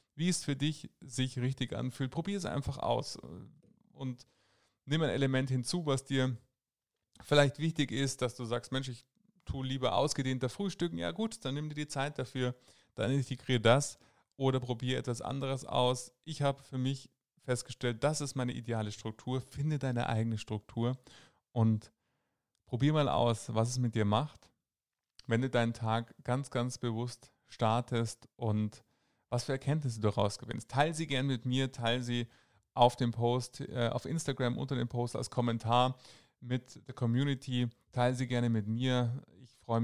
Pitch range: 115-135 Hz